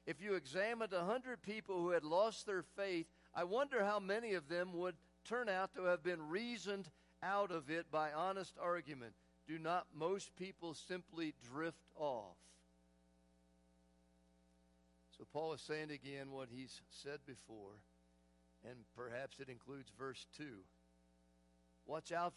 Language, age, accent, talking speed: English, 50-69, American, 145 wpm